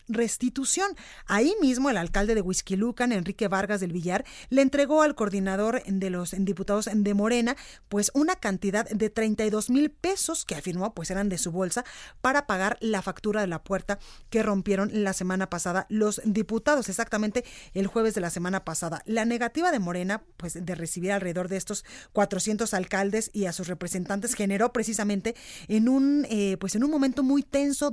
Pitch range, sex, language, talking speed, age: 195-250 Hz, female, Spanish, 175 wpm, 30-49